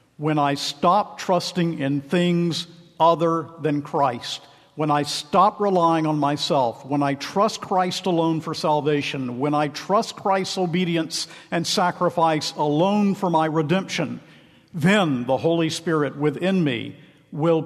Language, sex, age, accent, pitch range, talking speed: English, male, 50-69, American, 140-170 Hz, 135 wpm